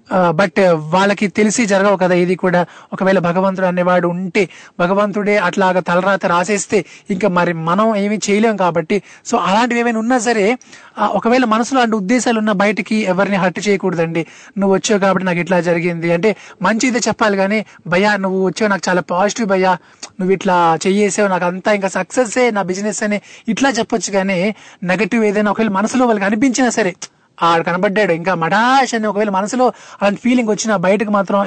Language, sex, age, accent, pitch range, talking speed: Telugu, male, 20-39, native, 180-215 Hz, 160 wpm